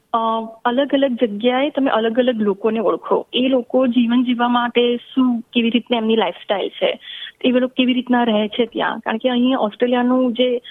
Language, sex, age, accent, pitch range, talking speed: Gujarati, female, 20-39, native, 220-250 Hz, 105 wpm